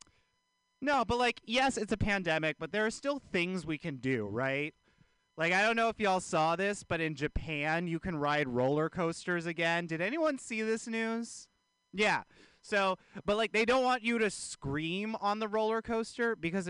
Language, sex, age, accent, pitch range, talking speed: English, male, 30-49, American, 150-225 Hz, 190 wpm